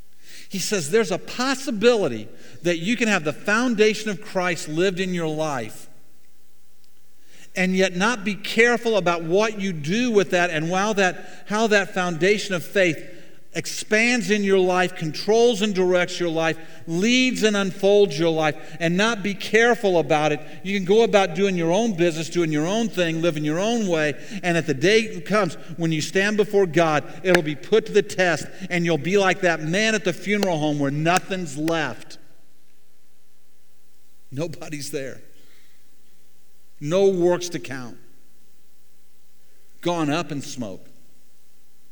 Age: 50-69